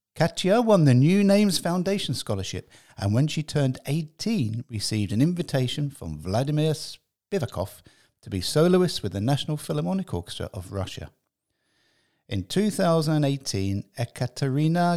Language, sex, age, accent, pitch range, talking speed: English, male, 50-69, British, 100-155 Hz, 125 wpm